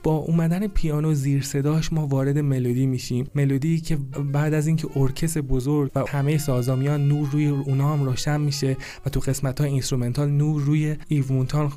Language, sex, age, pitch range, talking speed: Persian, male, 30-49, 130-150 Hz, 170 wpm